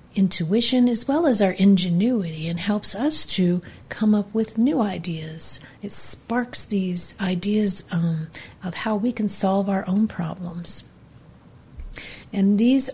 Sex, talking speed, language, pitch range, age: female, 140 wpm, English, 175-215 Hz, 50-69